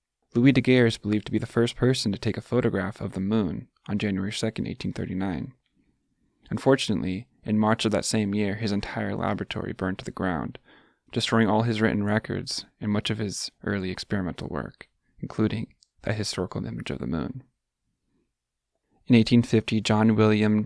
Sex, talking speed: male, 165 wpm